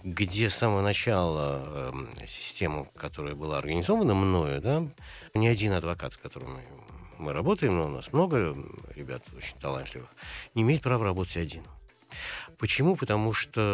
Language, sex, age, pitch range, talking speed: Russian, male, 50-69, 75-95 Hz, 150 wpm